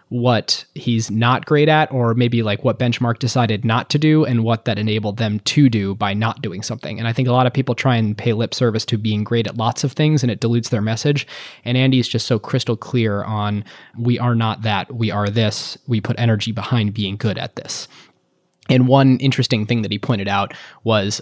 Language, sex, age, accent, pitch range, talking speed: English, male, 20-39, American, 105-125 Hz, 225 wpm